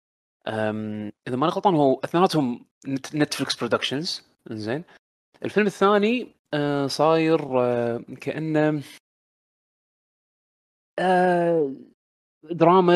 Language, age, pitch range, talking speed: Arabic, 20-39, 115-155 Hz, 65 wpm